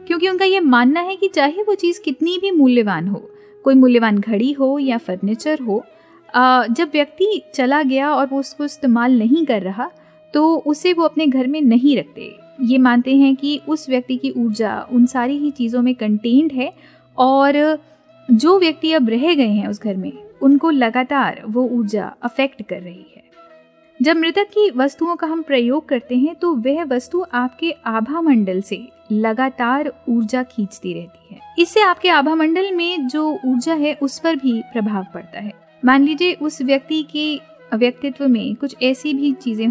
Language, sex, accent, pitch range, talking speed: Hindi, female, native, 235-310 Hz, 180 wpm